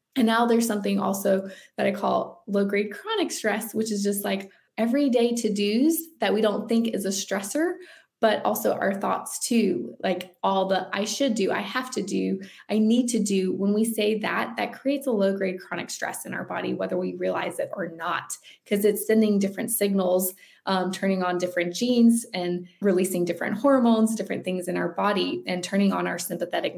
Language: English